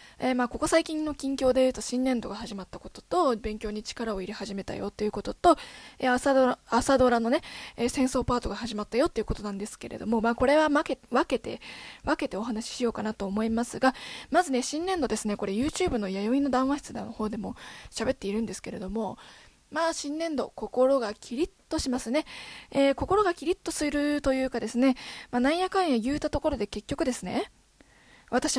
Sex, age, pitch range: female, 20-39, 215-285 Hz